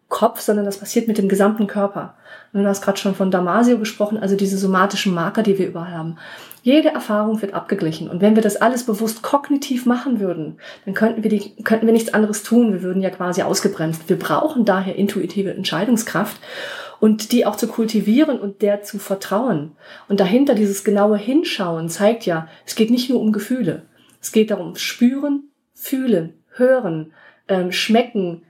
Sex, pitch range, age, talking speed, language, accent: female, 190-225 Hz, 30-49, 180 wpm, German, German